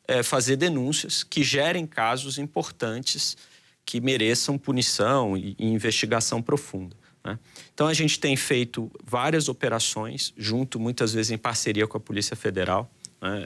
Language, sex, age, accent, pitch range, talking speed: Portuguese, male, 40-59, Brazilian, 105-130 Hz, 140 wpm